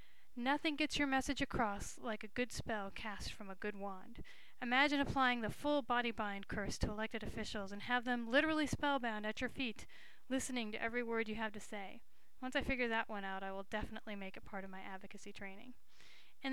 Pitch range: 215-255 Hz